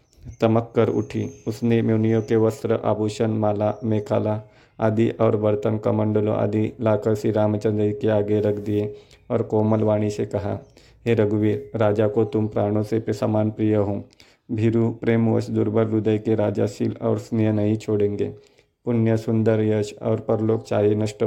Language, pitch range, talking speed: Hindi, 105-115 Hz, 150 wpm